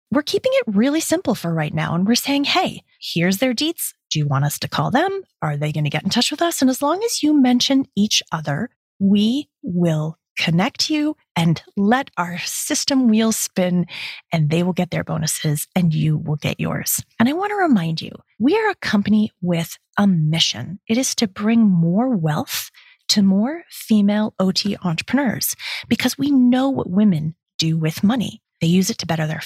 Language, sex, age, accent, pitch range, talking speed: English, female, 30-49, American, 170-245 Hz, 200 wpm